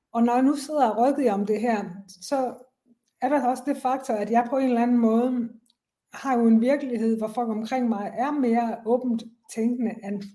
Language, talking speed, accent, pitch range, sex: Danish, 210 wpm, native, 210-250 Hz, female